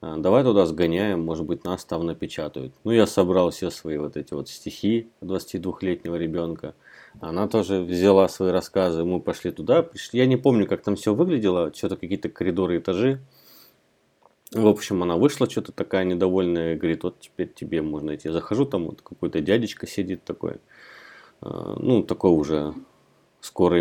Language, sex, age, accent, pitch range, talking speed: Russian, male, 30-49, native, 80-105 Hz, 165 wpm